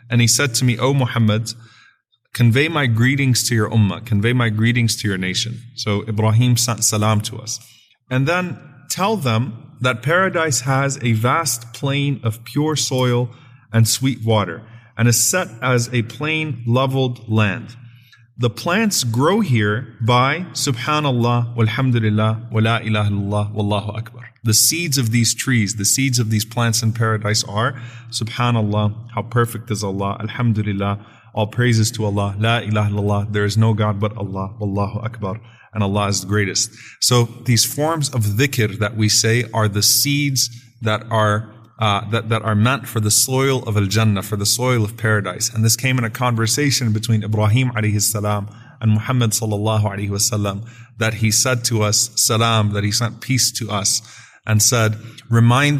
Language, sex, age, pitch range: English, male, 30-49, 105-125 Hz